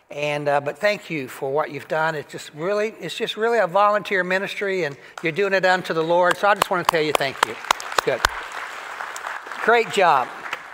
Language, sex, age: English, male, 60-79